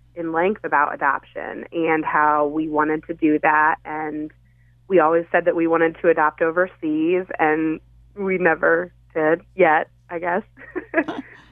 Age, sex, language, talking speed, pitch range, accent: 30-49, female, English, 145 wpm, 150-180 Hz, American